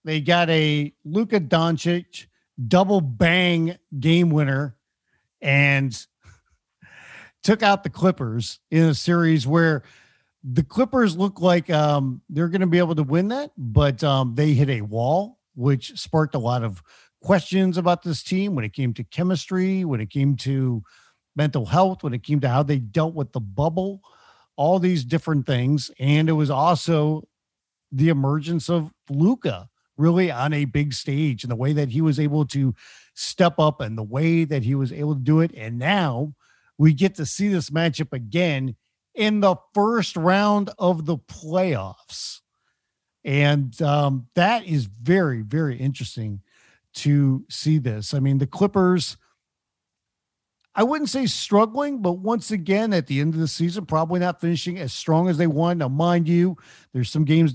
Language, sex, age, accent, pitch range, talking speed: English, male, 50-69, American, 135-175 Hz, 165 wpm